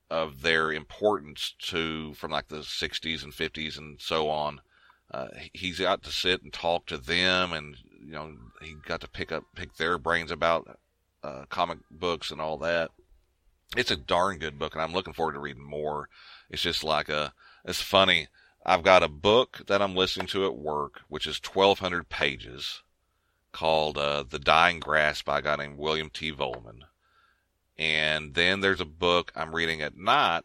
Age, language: 40-59, English